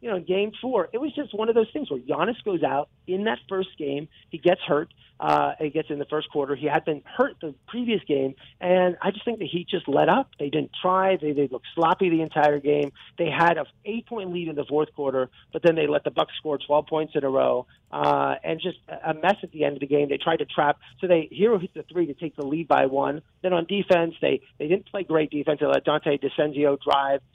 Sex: male